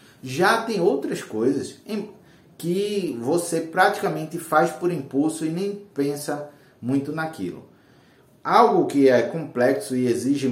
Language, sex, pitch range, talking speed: Portuguese, male, 125-160 Hz, 120 wpm